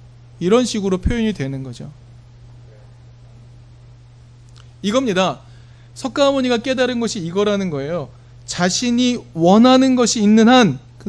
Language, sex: Korean, male